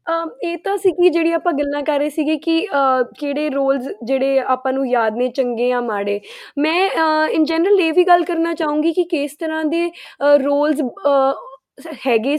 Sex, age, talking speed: female, 10-29, 145 wpm